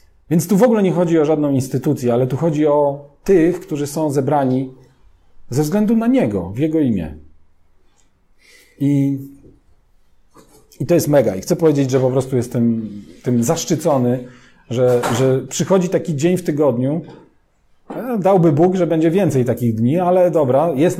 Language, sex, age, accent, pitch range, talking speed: Polish, male, 40-59, native, 115-160 Hz, 155 wpm